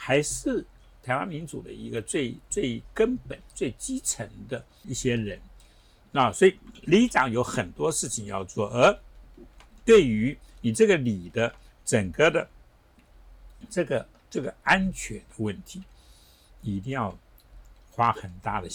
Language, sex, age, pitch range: Chinese, male, 60-79, 95-135 Hz